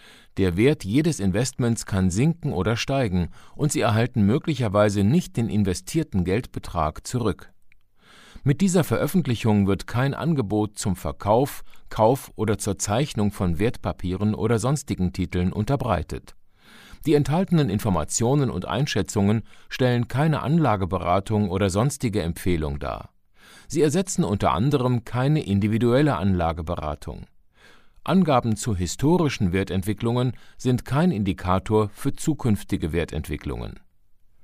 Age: 50-69